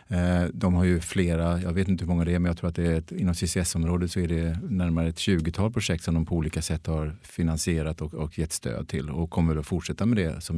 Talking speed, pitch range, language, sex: 260 wpm, 80-95 Hz, Swedish, male